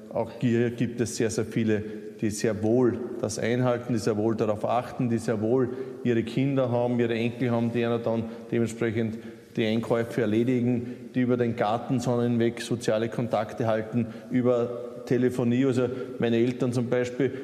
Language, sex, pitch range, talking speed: German, male, 115-125 Hz, 160 wpm